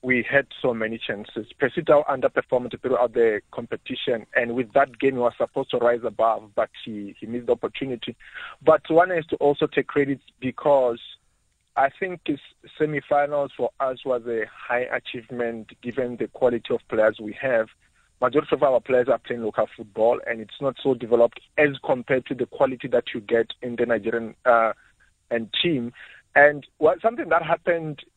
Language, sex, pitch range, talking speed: English, male, 115-145 Hz, 175 wpm